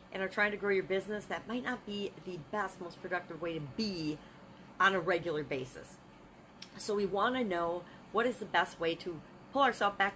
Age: 40-59